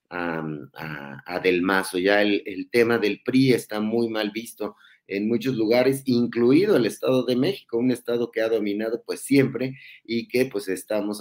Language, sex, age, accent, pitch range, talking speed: Spanish, male, 30-49, Mexican, 100-120 Hz, 180 wpm